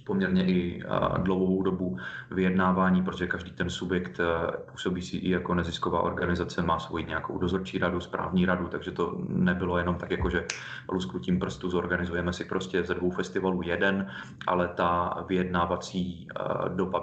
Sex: male